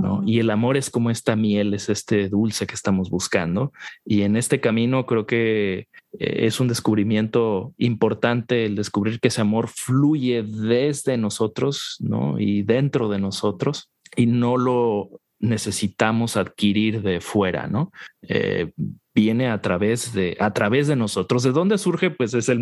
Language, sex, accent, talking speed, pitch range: Spanish, male, Mexican, 160 wpm, 100-120 Hz